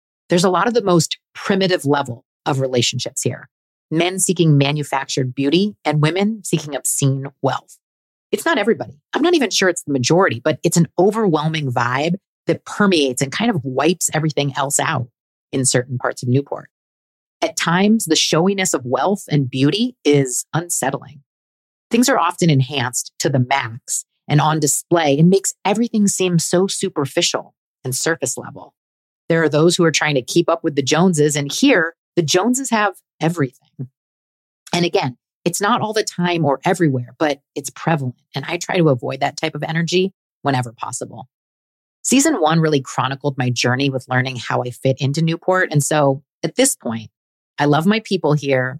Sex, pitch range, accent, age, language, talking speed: female, 135-175 Hz, American, 40-59, English, 175 wpm